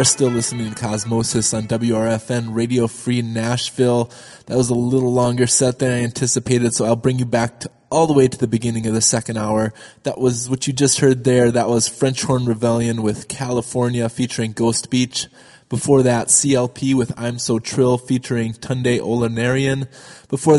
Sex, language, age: male, English, 20-39